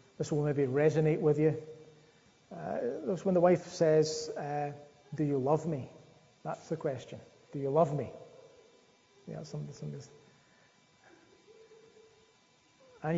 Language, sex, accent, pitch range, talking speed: English, male, British, 145-165 Hz, 120 wpm